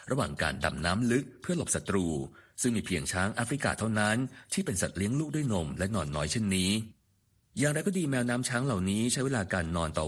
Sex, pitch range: male, 85-120 Hz